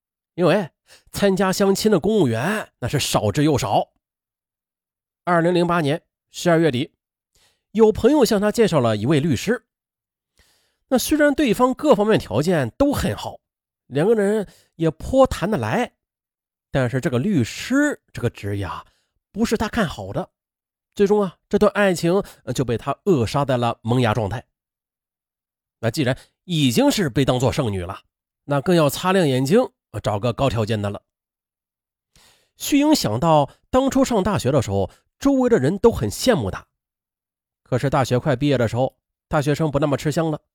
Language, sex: Chinese, male